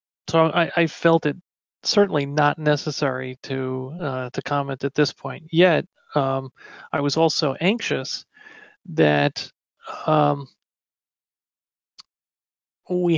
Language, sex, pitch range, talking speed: English, male, 135-165 Hz, 110 wpm